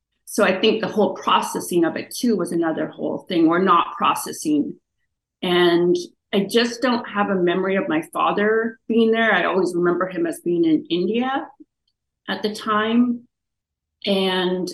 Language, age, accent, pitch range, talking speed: English, 30-49, American, 175-245 Hz, 165 wpm